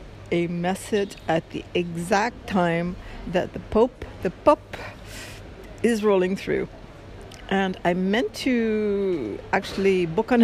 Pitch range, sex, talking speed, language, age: 155-185 Hz, female, 120 wpm, English, 60-79